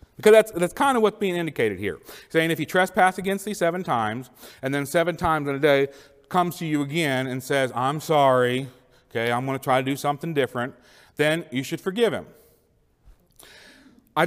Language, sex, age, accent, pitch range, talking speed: English, male, 40-59, American, 125-165 Hz, 200 wpm